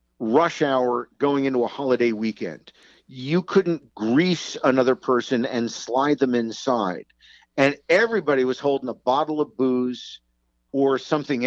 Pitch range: 115-155 Hz